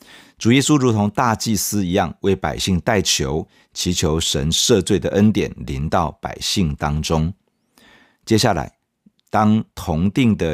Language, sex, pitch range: Chinese, male, 80-110 Hz